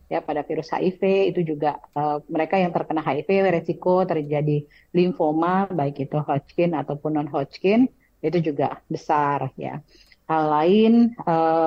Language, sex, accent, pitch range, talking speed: Indonesian, female, native, 155-185 Hz, 135 wpm